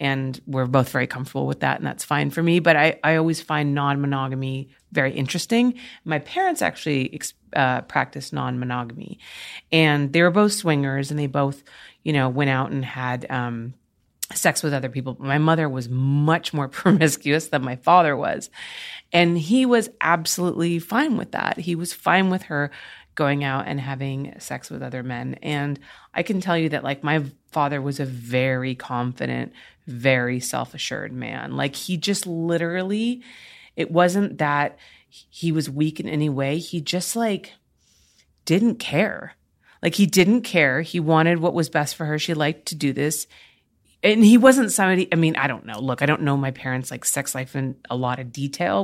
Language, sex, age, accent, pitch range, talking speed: English, female, 30-49, American, 135-175 Hz, 185 wpm